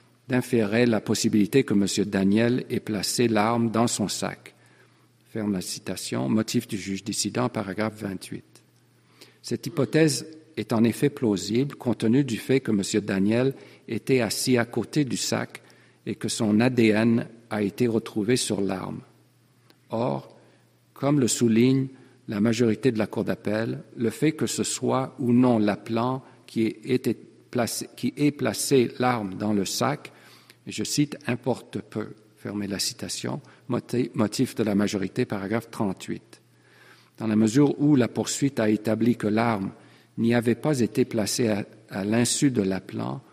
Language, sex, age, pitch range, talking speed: English, male, 50-69, 105-125 Hz, 150 wpm